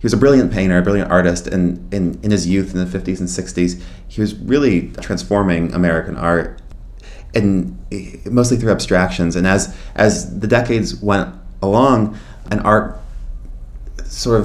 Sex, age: male, 30-49